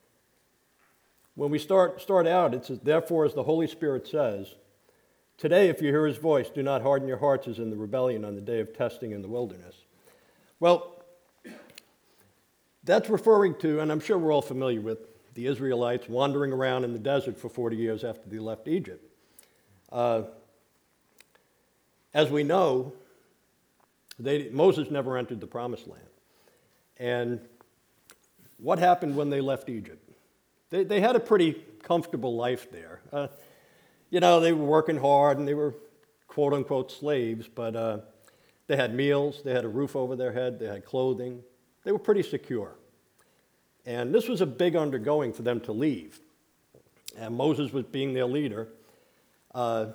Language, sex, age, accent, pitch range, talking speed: English, male, 50-69, American, 120-155 Hz, 160 wpm